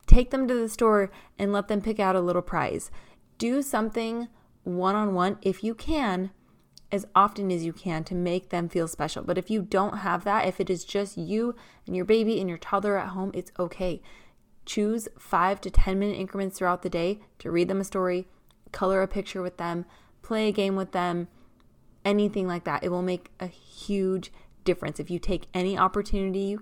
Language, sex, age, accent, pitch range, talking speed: English, female, 20-39, American, 175-200 Hz, 200 wpm